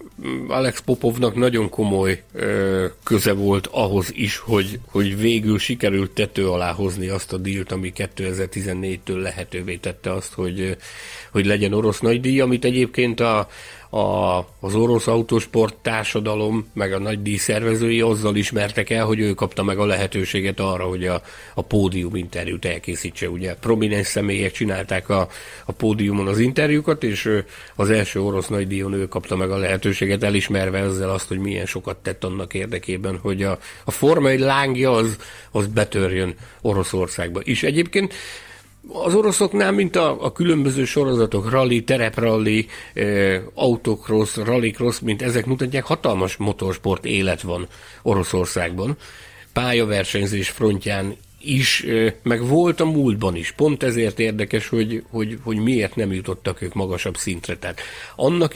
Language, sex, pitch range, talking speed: Hungarian, male, 95-115 Hz, 145 wpm